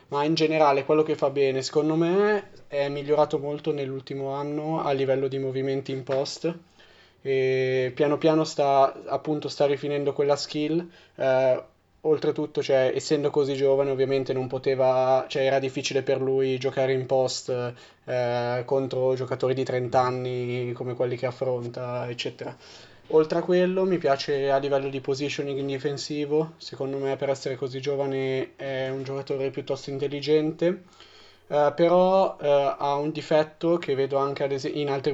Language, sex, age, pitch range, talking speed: Italian, male, 20-39, 135-150 Hz, 155 wpm